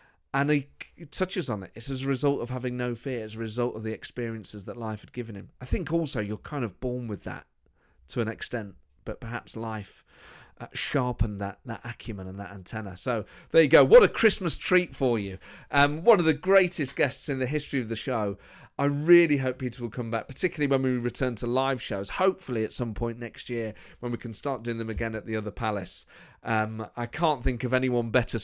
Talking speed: 225 wpm